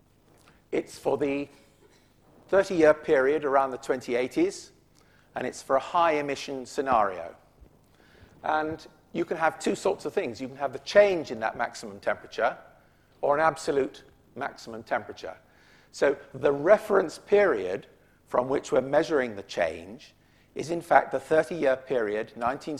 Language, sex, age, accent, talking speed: English, male, 50-69, British, 140 wpm